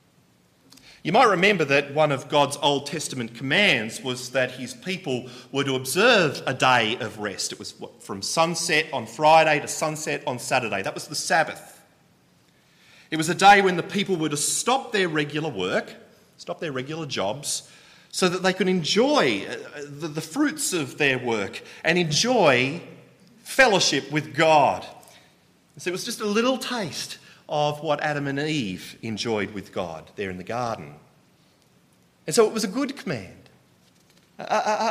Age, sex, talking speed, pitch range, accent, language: 30-49, male, 165 wpm, 140-210 Hz, Australian, English